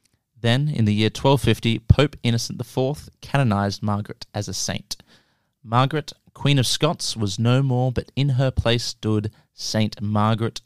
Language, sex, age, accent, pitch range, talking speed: English, male, 30-49, Australian, 105-130 Hz, 150 wpm